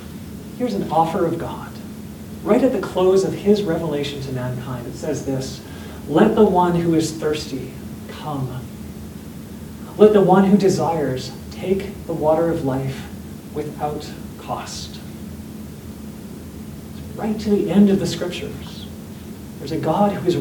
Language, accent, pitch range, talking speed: English, American, 150-190 Hz, 140 wpm